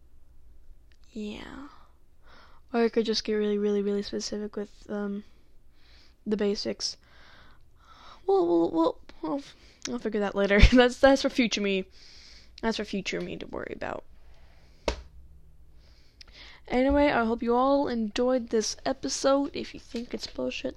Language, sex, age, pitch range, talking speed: English, female, 10-29, 165-250 Hz, 135 wpm